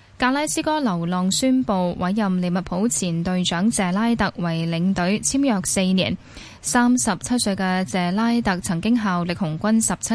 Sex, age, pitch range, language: female, 10-29, 180-230 Hz, Chinese